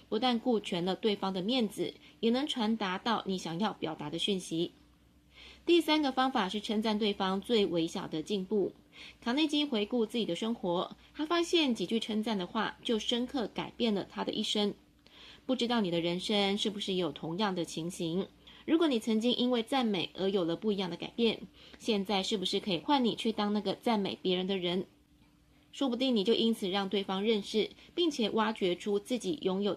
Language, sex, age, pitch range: Chinese, female, 20-39, 185-235 Hz